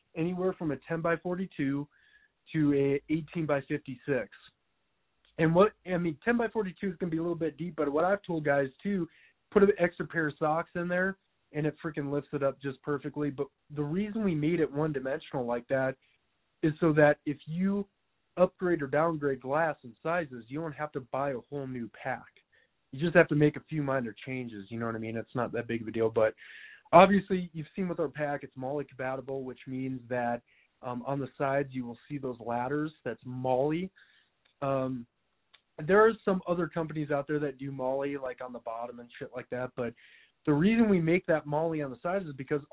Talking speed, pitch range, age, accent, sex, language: 215 wpm, 130-165 Hz, 20-39, American, male, English